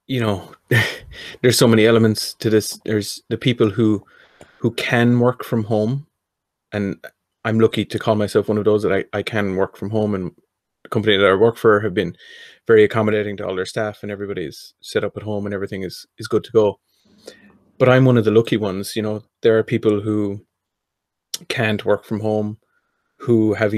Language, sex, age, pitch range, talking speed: English, male, 30-49, 105-115 Hz, 200 wpm